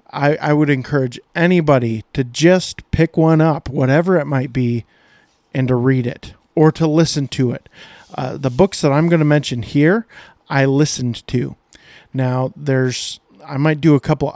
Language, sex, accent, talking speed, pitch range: English, male, American, 175 wpm, 130-160 Hz